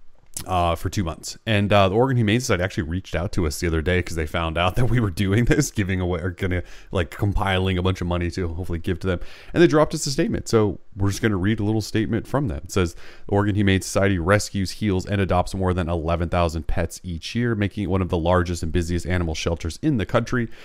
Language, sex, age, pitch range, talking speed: English, male, 30-49, 90-115 Hz, 250 wpm